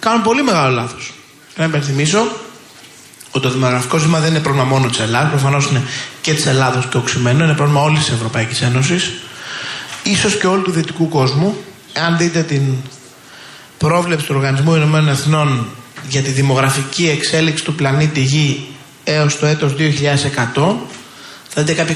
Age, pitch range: 20-39, 135-165 Hz